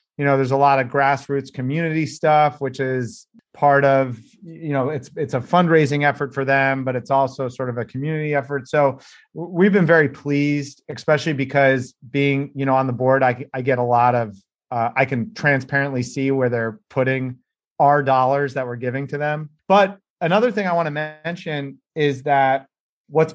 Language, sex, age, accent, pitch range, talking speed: English, male, 30-49, American, 135-155 Hz, 190 wpm